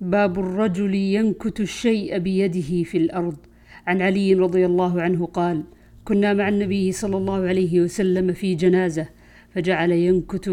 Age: 50-69